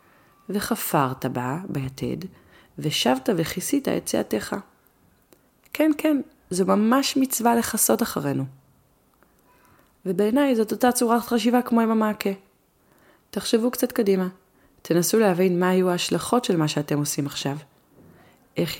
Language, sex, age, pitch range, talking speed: Hebrew, female, 30-49, 150-190 Hz, 115 wpm